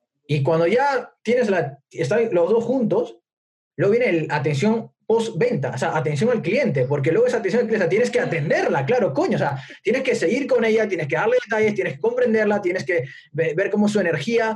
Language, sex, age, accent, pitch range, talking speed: Spanish, male, 20-39, Spanish, 150-205 Hz, 220 wpm